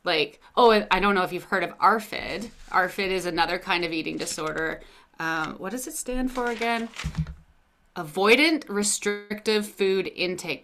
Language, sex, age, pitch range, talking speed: English, female, 30-49, 165-215 Hz, 160 wpm